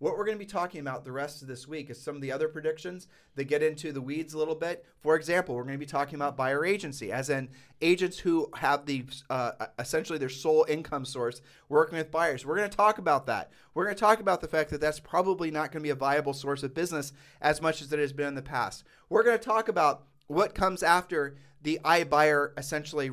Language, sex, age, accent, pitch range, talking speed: English, male, 30-49, American, 135-165 Hz, 245 wpm